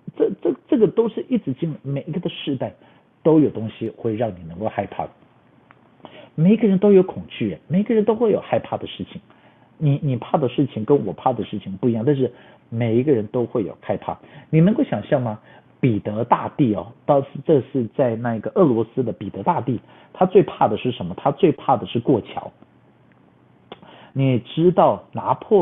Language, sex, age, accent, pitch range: Chinese, male, 50-69, native, 110-160 Hz